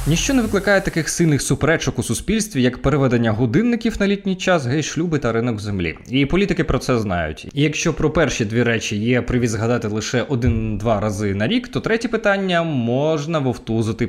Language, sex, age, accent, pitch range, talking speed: Ukrainian, male, 20-39, native, 115-160 Hz, 185 wpm